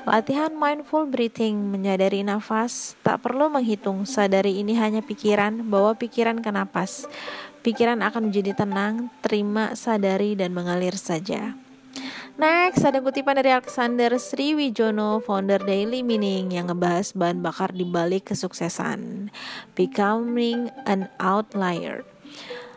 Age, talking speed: 20-39, 115 wpm